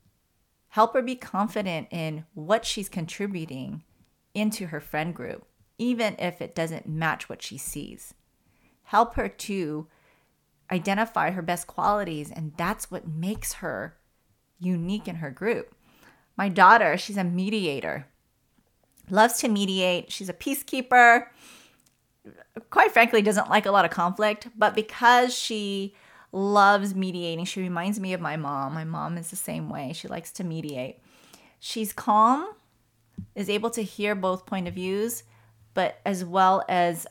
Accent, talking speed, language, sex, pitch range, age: American, 145 wpm, English, female, 165-215 Hz, 30-49